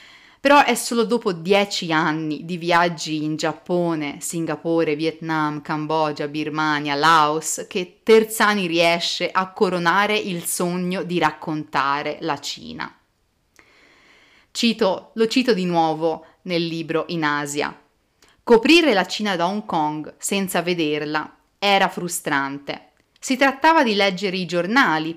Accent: native